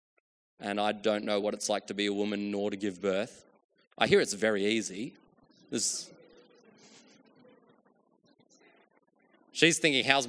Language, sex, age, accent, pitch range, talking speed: English, male, 20-39, Australian, 115-150 Hz, 140 wpm